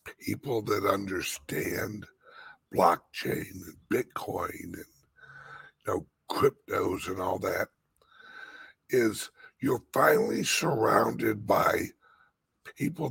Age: 60-79